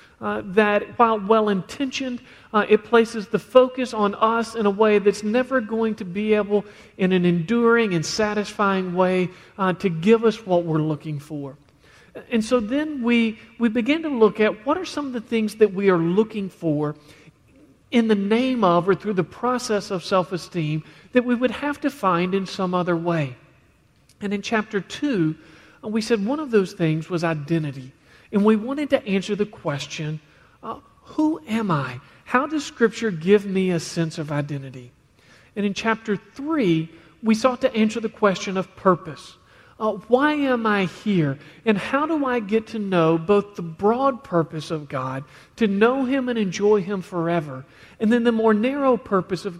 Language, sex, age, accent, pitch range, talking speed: English, male, 40-59, American, 175-230 Hz, 180 wpm